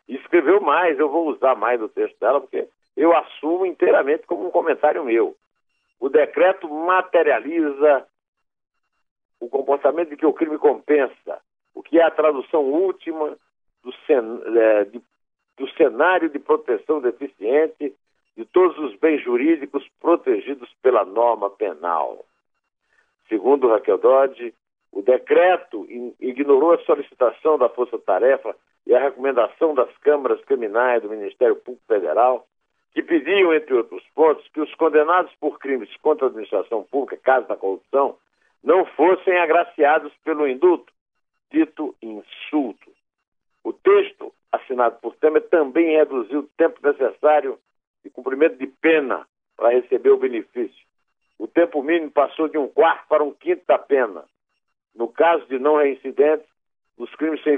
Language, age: Portuguese, 60-79